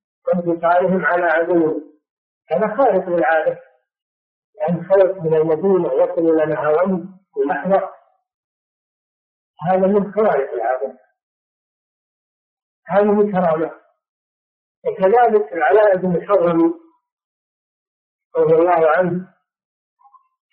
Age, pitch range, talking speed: 50-69, 165-215 Hz, 80 wpm